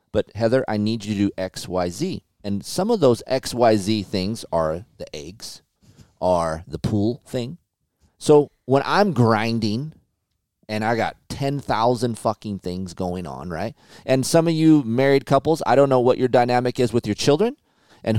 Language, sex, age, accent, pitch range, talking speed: English, male, 30-49, American, 100-140 Hz, 180 wpm